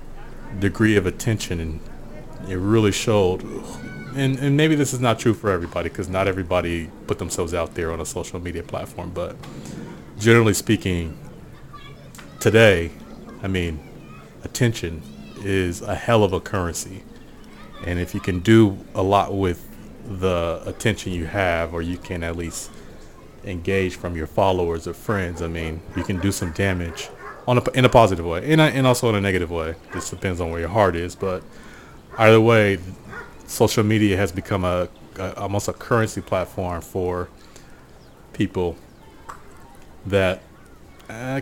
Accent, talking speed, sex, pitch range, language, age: American, 160 wpm, male, 85-105 Hz, English, 30-49